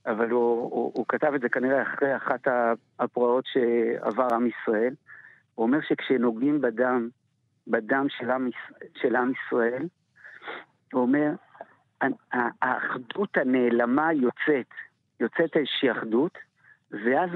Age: 50-69